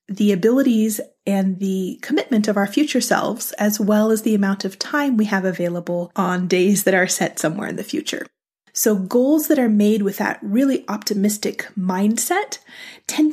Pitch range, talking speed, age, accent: 200-255 Hz, 175 wpm, 30-49, American